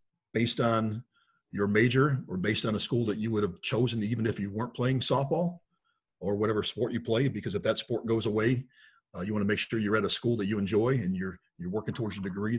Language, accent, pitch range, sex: English, American, 100-120 Hz, male